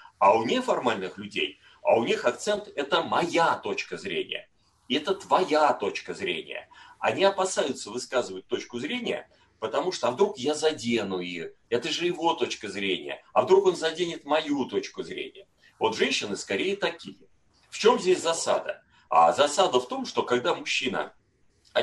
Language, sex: Russian, male